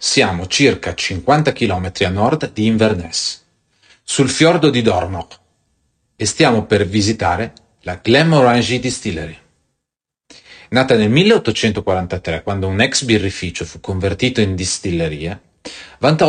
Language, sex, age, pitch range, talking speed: Italian, male, 40-59, 90-120 Hz, 115 wpm